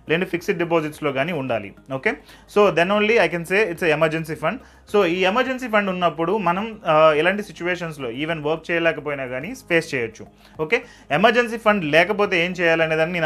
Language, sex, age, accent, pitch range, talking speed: Telugu, male, 30-49, native, 150-185 Hz, 165 wpm